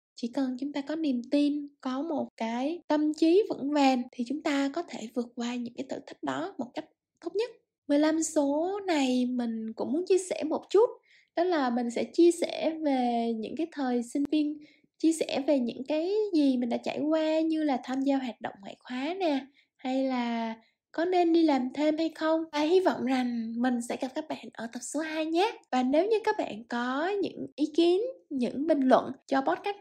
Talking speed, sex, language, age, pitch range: 215 wpm, female, Vietnamese, 10-29, 250-320 Hz